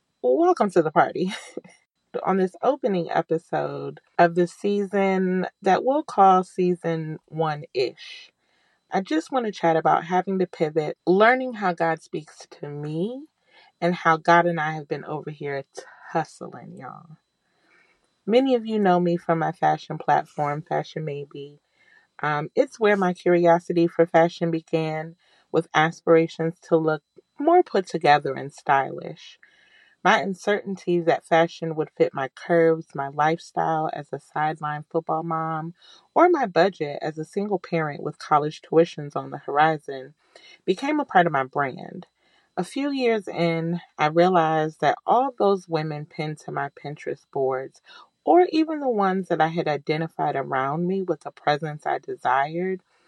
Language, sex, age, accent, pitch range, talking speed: English, female, 30-49, American, 155-190 Hz, 150 wpm